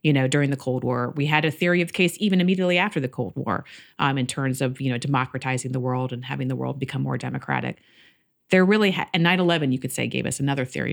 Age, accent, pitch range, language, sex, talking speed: 30-49, American, 130-160 Hz, English, female, 255 wpm